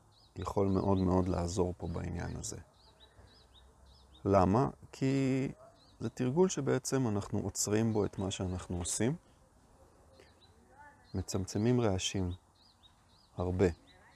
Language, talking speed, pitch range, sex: Hebrew, 95 wpm, 85-105 Hz, male